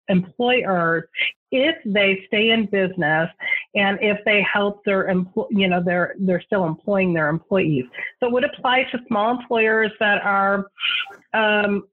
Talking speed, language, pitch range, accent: 150 wpm, English, 185-225 Hz, American